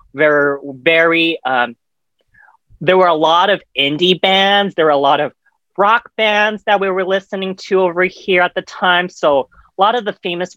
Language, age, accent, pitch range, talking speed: English, 30-49, American, 160-205 Hz, 185 wpm